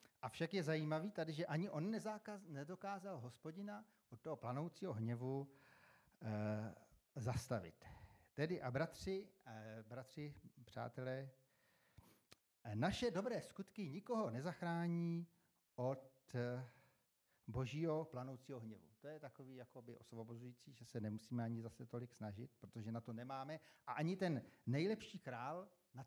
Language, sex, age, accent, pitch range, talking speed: Czech, male, 40-59, native, 120-160 Hz, 115 wpm